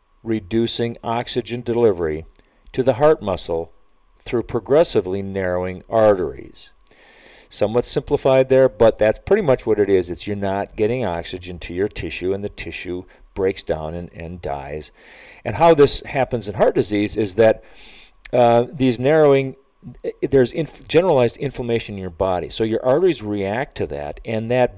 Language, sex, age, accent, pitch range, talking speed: English, male, 40-59, American, 100-135 Hz, 155 wpm